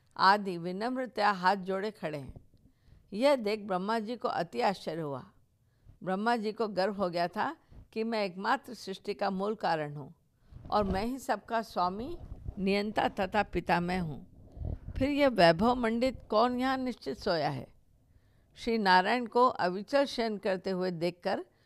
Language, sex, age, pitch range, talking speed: Hindi, female, 50-69, 180-230 Hz, 155 wpm